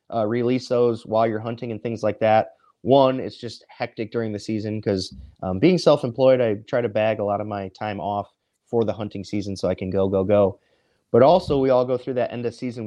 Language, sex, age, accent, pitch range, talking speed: English, male, 30-49, American, 105-125 Hz, 235 wpm